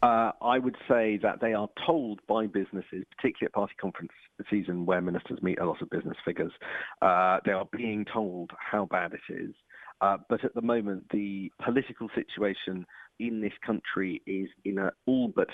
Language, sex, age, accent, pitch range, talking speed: English, male, 50-69, British, 95-115 Hz, 185 wpm